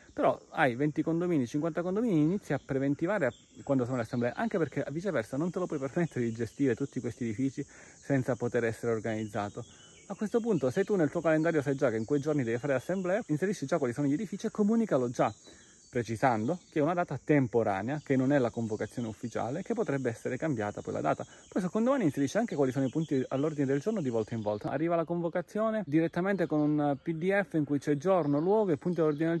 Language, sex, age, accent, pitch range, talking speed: Italian, male, 30-49, native, 120-175 Hz, 220 wpm